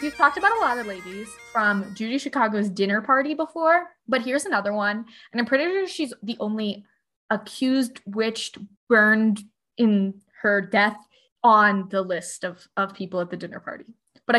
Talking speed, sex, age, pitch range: 170 wpm, female, 20-39, 195-250 Hz